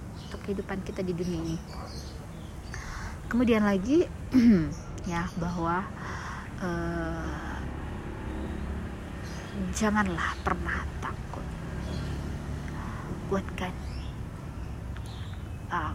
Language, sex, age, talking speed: Indonesian, female, 20-39, 55 wpm